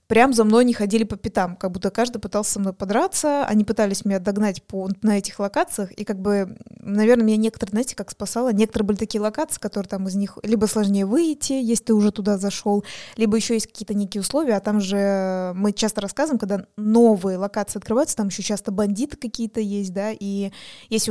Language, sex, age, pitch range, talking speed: Russian, female, 20-39, 200-235 Hz, 205 wpm